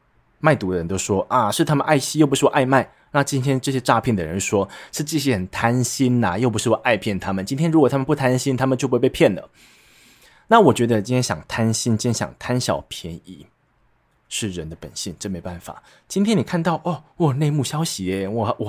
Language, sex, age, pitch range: Chinese, male, 20-39, 95-130 Hz